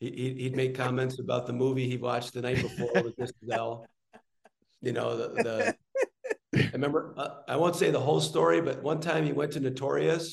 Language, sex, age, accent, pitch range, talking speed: English, male, 50-69, American, 130-155 Hz, 200 wpm